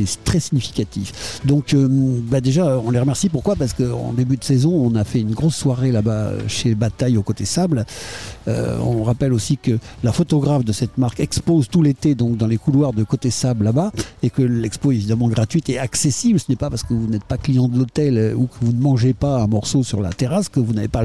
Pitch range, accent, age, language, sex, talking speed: 115-145 Hz, French, 60-79, French, male, 235 wpm